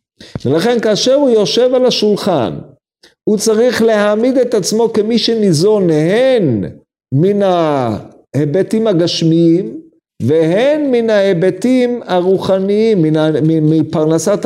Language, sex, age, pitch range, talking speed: Hebrew, male, 50-69, 140-205 Hz, 90 wpm